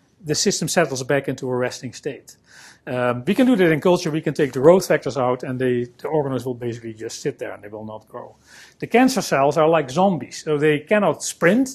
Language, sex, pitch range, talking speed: English, male, 130-165 Hz, 230 wpm